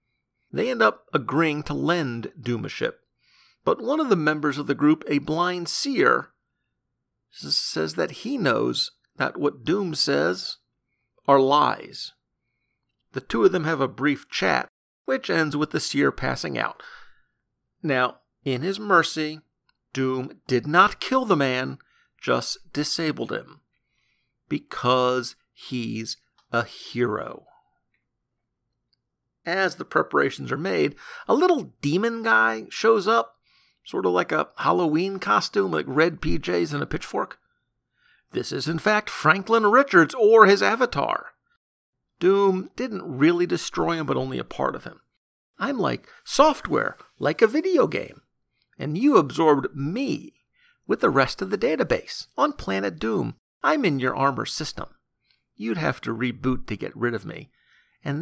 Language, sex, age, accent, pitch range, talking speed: English, male, 50-69, American, 125-200 Hz, 145 wpm